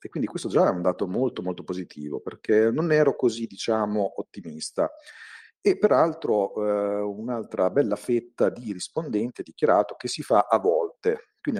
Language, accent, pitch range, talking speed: Italian, native, 90-145 Hz, 160 wpm